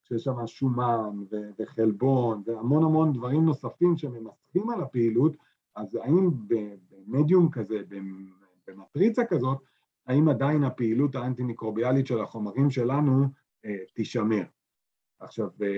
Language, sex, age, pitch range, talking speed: Hebrew, male, 50-69, 110-155 Hz, 100 wpm